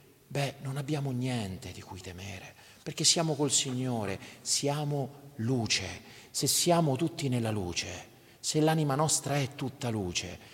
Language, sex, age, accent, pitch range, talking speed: Italian, male, 40-59, native, 120-185 Hz, 135 wpm